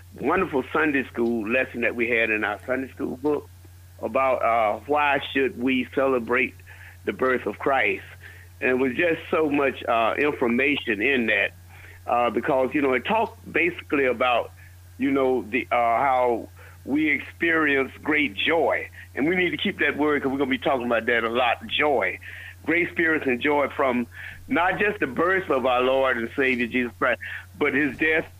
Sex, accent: male, American